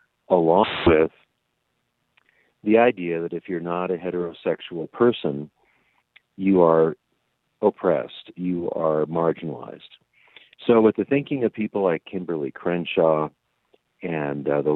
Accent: American